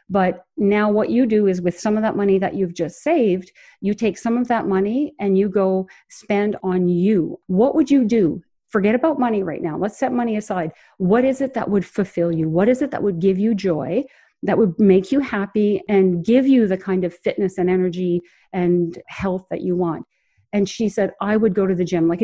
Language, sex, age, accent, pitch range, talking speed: English, female, 50-69, American, 185-235 Hz, 225 wpm